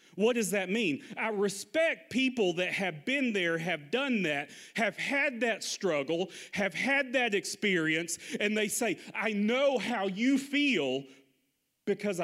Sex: male